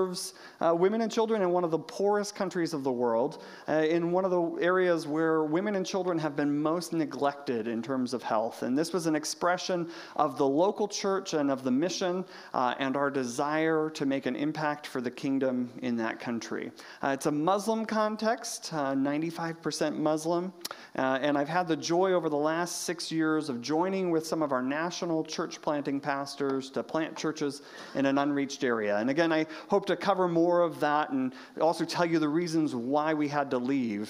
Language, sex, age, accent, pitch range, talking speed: English, male, 40-59, American, 145-190 Hz, 200 wpm